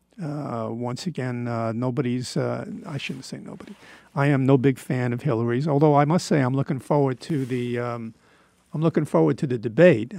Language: English